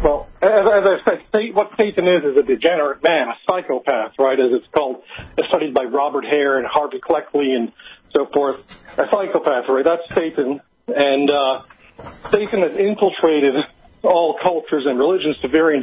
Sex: male